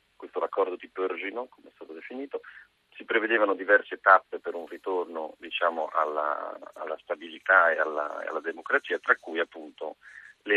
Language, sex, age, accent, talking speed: Italian, male, 40-59, native, 155 wpm